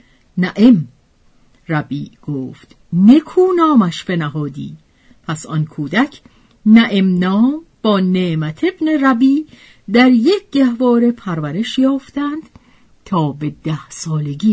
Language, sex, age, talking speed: Persian, female, 50-69, 100 wpm